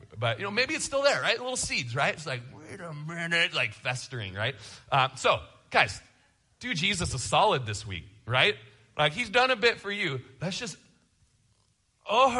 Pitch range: 110-155 Hz